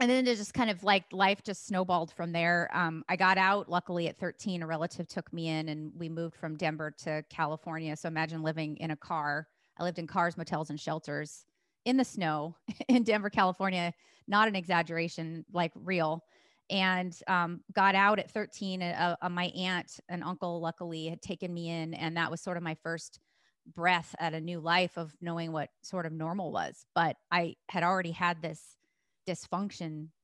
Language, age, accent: English, 30-49, American